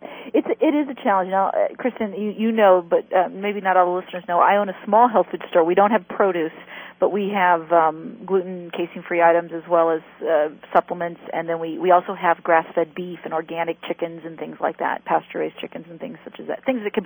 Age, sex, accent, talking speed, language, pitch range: 40-59, female, American, 235 wpm, English, 180-240 Hz